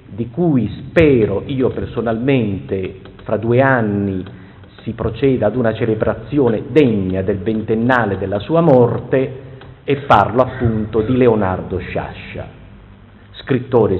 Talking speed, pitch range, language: 110 wpm, 105-130 Hz, Italian